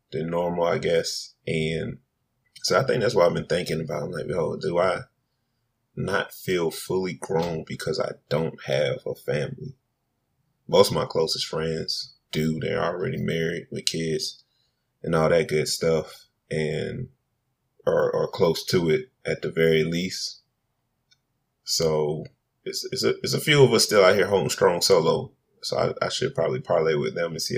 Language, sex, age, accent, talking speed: English, male, 30-49, American, 170 wpm